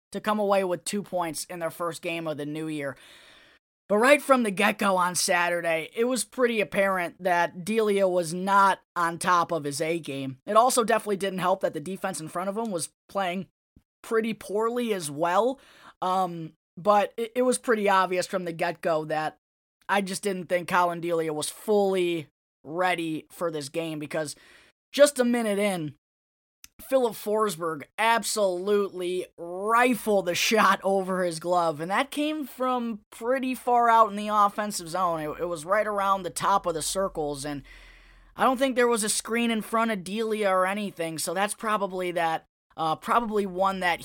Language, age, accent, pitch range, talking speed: English, 20-39, American, 170-210 Hz, 180 wpm